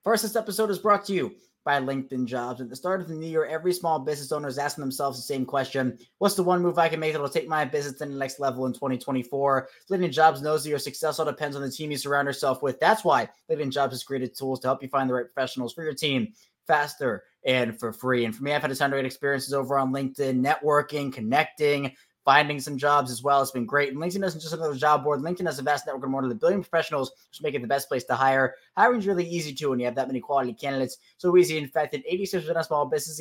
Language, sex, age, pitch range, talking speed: English, male, 20-39, 130-155 Hz, 275 wpm